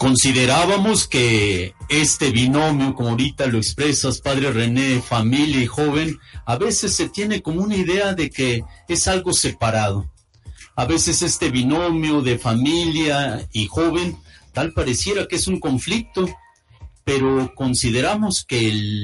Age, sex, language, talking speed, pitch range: 50-69, male, Spanish, 135 wpm, 100-145 Hz